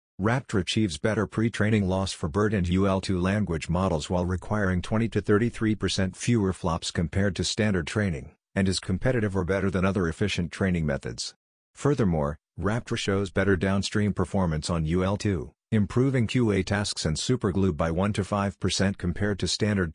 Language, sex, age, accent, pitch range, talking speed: English, male, 50-69, American, 90-105 Hz, 145 wpm